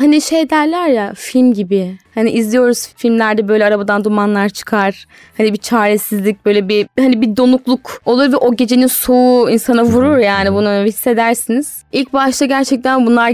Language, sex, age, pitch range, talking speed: Turkish, female, 10-29, 205-275 Hz, 155 wpm